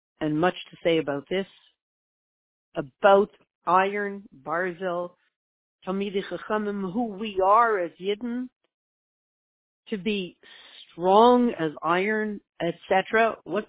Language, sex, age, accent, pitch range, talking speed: English, female, 50-69, American, 165-215 Hz, 90 wpm